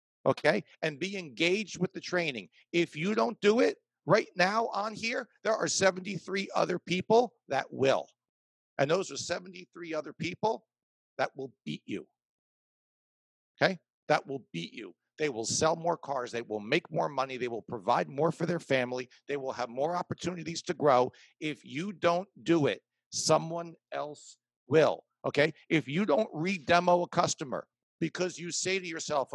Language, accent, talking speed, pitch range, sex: English, American, 170 wpm, 135-175 Hz, male